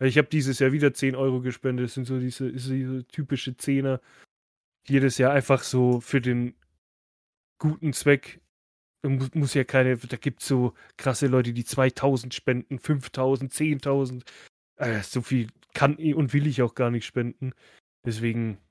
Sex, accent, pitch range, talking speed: male, German, 125-150 Hz, 160 wpm